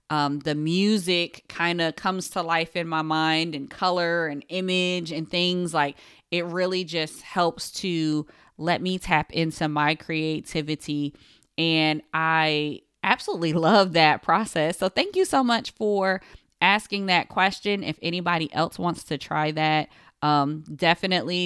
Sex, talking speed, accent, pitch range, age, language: female, 150 wpm, American, 155-180 Hz, 20-39, English